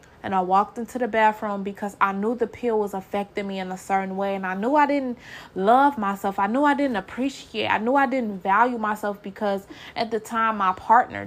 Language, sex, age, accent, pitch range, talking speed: English, female, 20-39, American, 190-220 Hz, 225 wpm